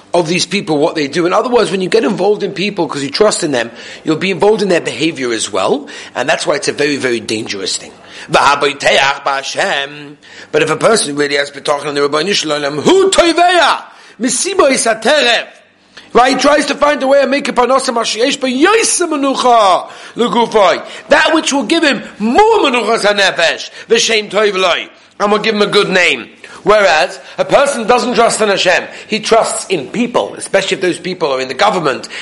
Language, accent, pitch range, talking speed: English, British, 155-245 Hz, 155 wpm